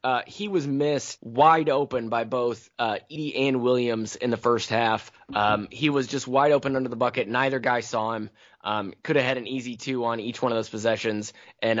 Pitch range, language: 115-140 Hz, English